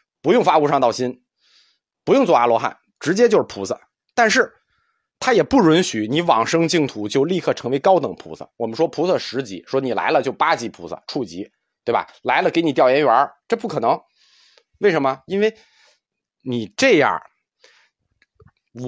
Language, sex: Chinese, male